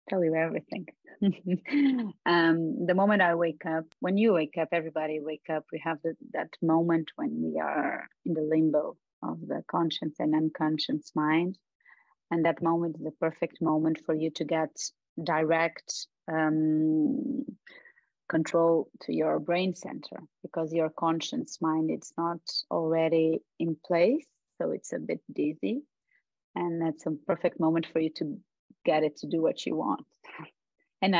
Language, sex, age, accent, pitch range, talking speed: English, female, 30-49, Italian, 160-190 Hz, 155 wpm